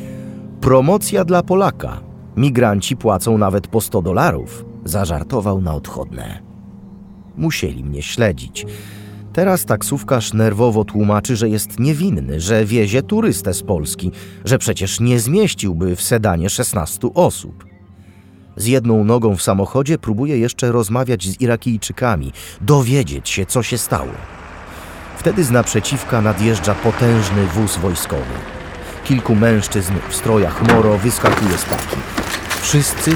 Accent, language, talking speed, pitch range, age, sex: native, Polish, 120 wpm, 90-125 Hz, 30-49, male